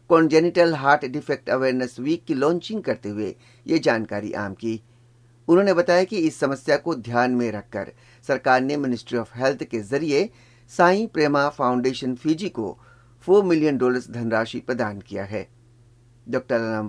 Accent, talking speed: native, 150 wpm